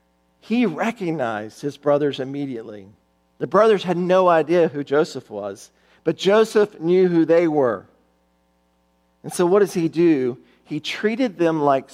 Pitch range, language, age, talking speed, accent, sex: 130-185 Hz, English, 50-69, 145 wpm, American, male